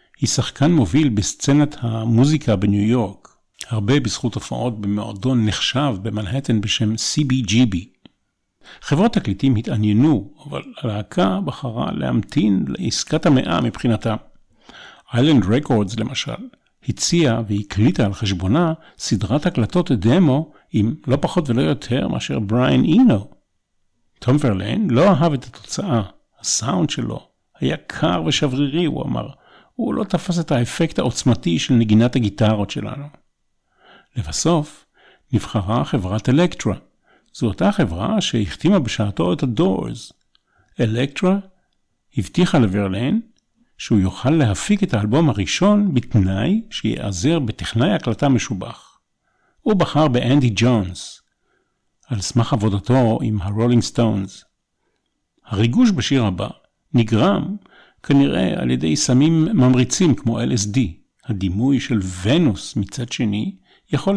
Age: 50-69